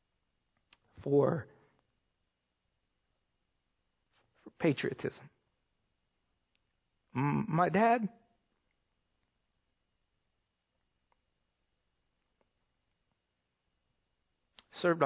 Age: 50-69